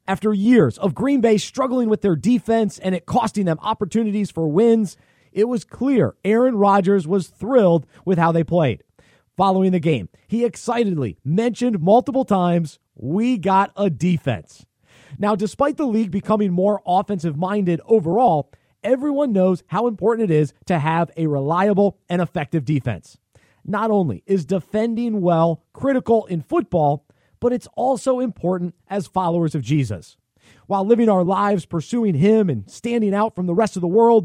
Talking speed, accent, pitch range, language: 160 wpm, American, 165-225 Hz, English